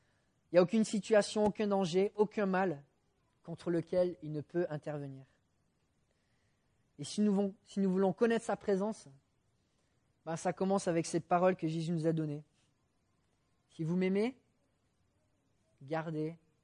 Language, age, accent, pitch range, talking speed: English, 30-49, French, 135-195 Hz, 135 wpm